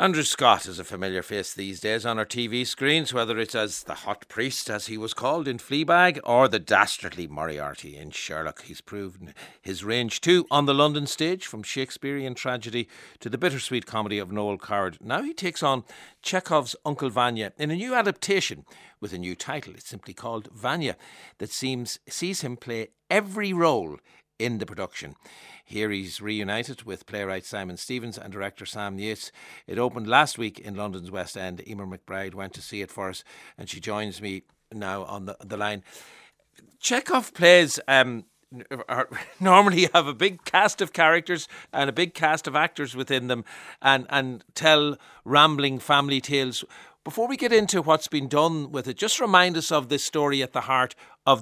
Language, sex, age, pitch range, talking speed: English, male, 60-79, 105-150 Hz, 185 wpm